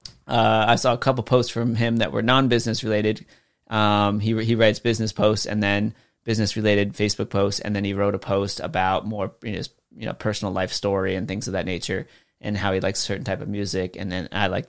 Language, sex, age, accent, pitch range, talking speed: English, male, 30-49, American, 100-120 Hz, 230 wpm